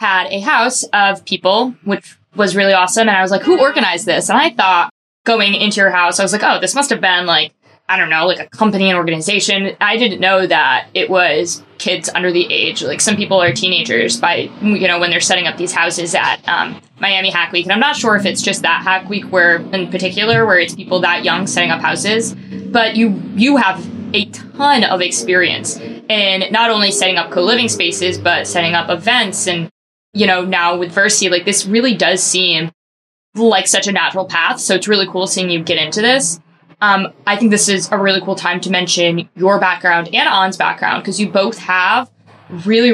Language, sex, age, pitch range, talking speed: English, female, 20-39, 180-210 Hz, 220 wpm